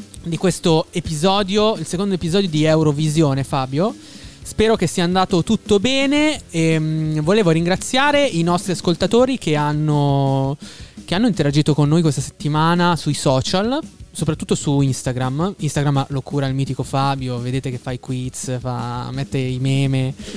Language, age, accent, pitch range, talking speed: Italian, 20-39, native, 135-165 Hz, 145 wpm